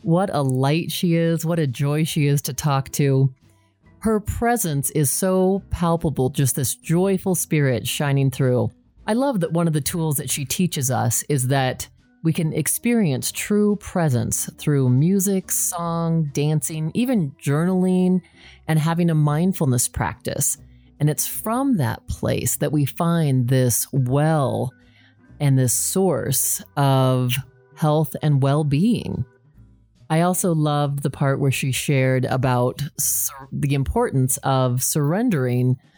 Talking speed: 140 wpm